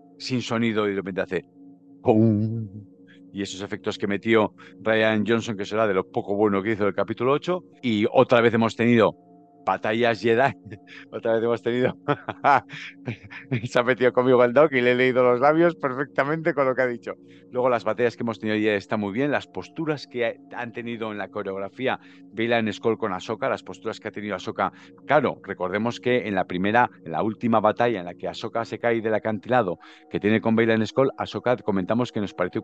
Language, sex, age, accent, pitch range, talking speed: Spanish, male, 50-69, Spanish, 100-120 Hz, 205 wpm